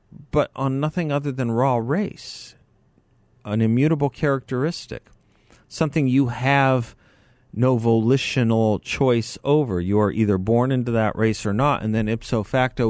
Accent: American